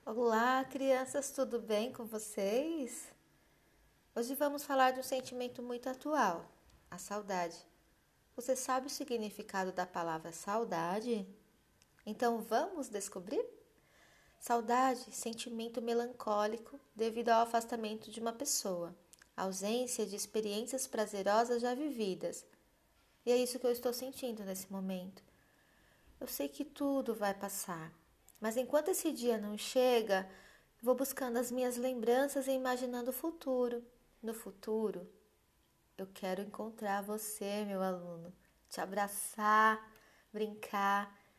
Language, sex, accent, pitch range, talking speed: Portuguese, female, Brazilian, 195-245 Hz, 120 wpm